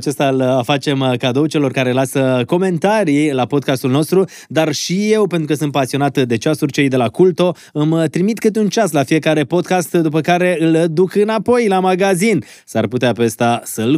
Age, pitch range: 20-39, 130-160 Hz